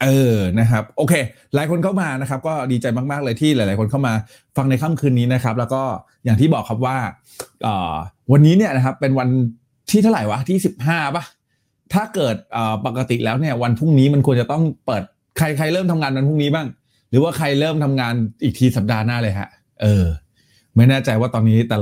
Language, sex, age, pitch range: Thai, male, 20-39, 115-150 Hz